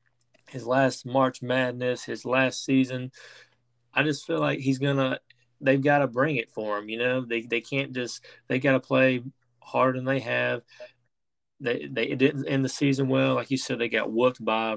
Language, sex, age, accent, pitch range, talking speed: English, male, 20-39, American, 110-130 Hz, 205 wpm